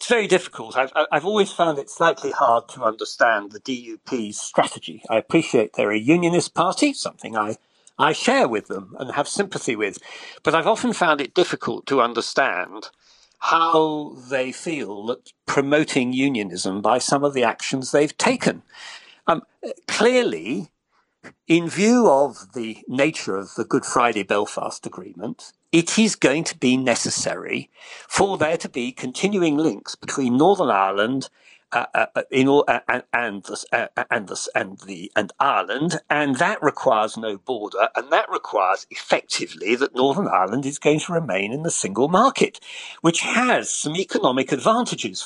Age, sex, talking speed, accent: 50-69, male, 150 wpm, British